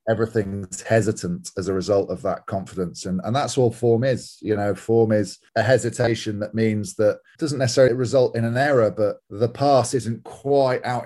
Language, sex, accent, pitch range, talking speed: English, male, British, 100-115 Hz, 190 wpm